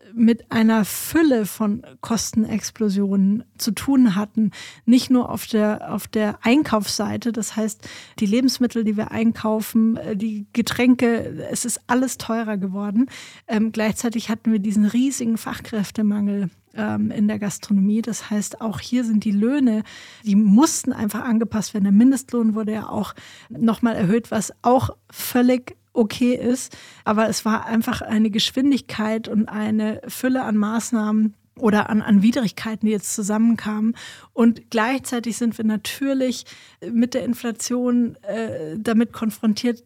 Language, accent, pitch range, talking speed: German, German, 210-235 Hz, 140 wpm